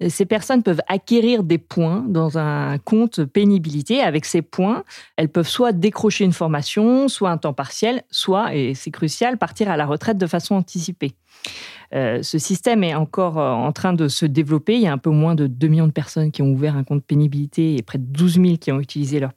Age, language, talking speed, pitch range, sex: 40-59, French, 215 wpm, 155-200 Hz, female